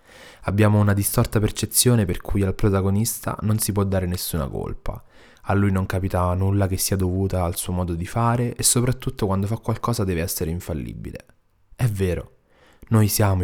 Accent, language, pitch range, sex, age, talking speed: native, Italian, 90-110 Hz, male, 20-39, 175 wpm